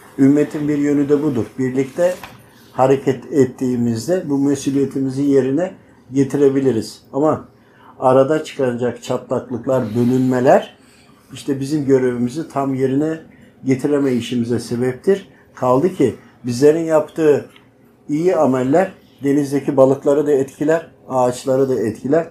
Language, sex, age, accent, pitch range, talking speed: Turkish, male, 60-79, native, 130-155 Hz, 100 wpm